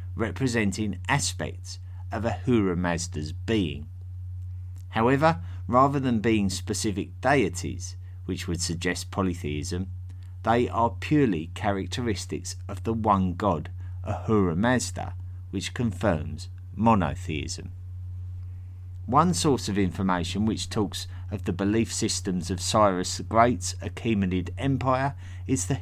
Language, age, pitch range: English, 50-69, 90-110 Hz